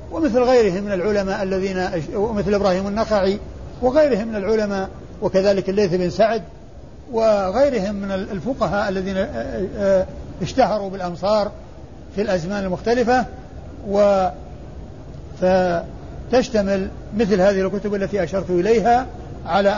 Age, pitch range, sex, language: 60-79, 180-210 Hz, male, Arabic